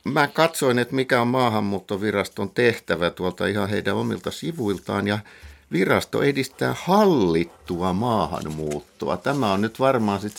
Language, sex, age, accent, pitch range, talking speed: Finnish, male, 60-79, native, 95-125 Hz, 125 wpm